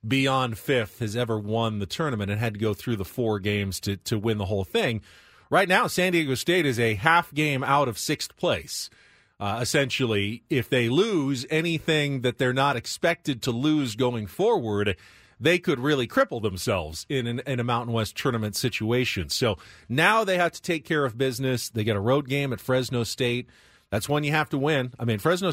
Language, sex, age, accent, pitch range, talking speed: English, male, 40-59, American, 110-150 Hz, 205 wpm